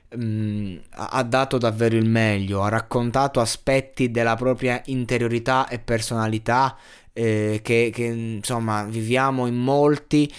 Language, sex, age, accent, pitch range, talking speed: Italian, male, 20-39, native, 110-130 Hz, 115 wpm